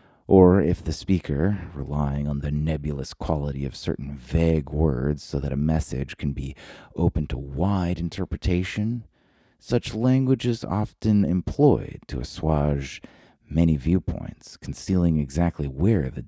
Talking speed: 135 wpm